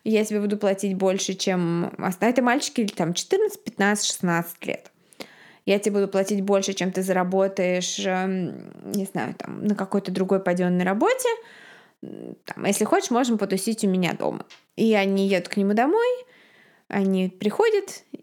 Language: Russian